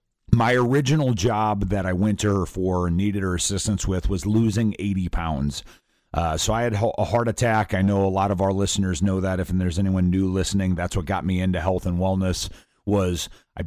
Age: 30-49